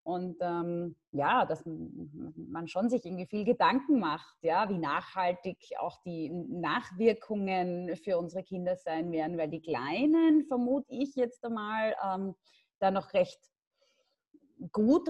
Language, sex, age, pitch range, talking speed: German, female, 30-49, 190-250 Hz, 135 wpm